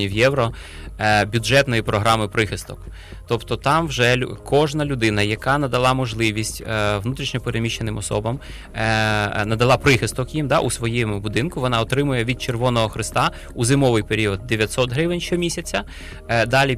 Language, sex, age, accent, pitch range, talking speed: Ukrainian, male, 20-39, native, 105-125 Hz, 120 wpm